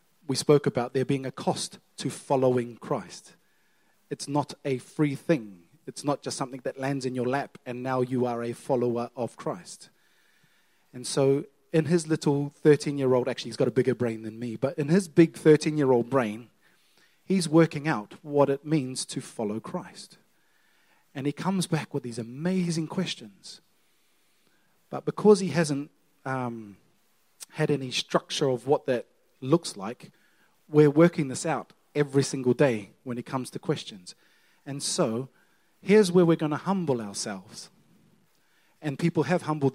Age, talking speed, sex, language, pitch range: 30-49, 160 wpm, male, English, 125-160 Hz